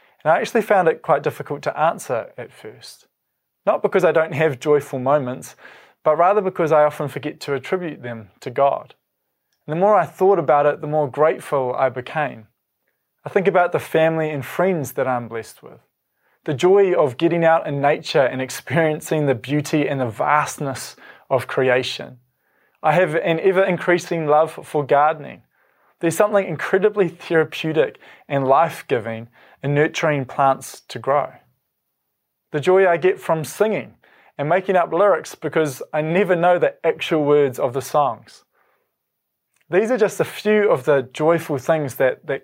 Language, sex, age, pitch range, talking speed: English, male, 20-39, 140-175 Hz, 165 wpm